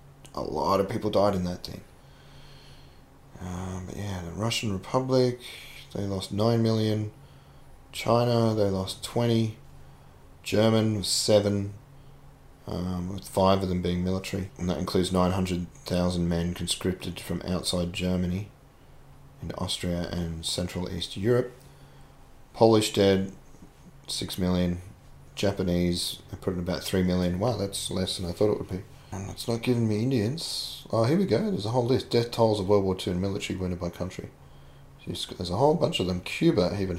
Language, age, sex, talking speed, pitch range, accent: English, 30-49, male, 160 wpm, 90-110 Hz, Australian